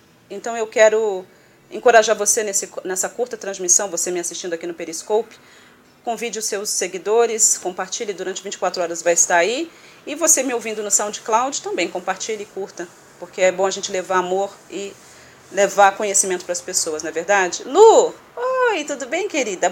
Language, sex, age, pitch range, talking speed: Portuguese, female, 30-49, 195-235 Hz, 170 wpm